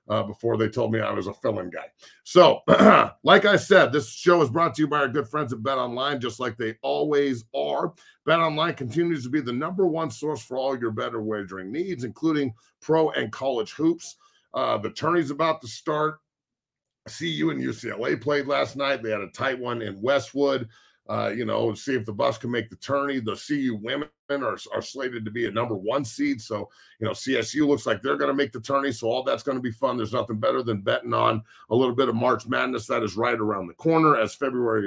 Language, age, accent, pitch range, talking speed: English, 50-69, American, 115-145 Hz, 230 wpm